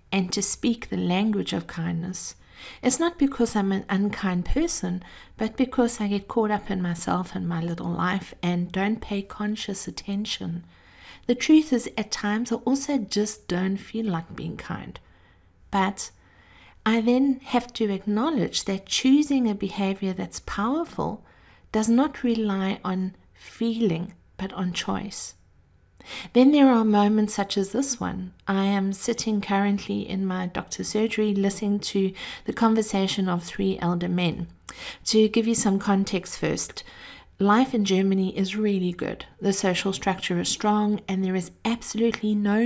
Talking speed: 155 wpm